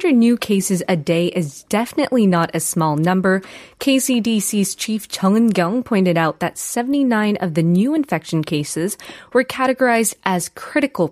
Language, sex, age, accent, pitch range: Korean, female, 20-39, American, 170-240 Hz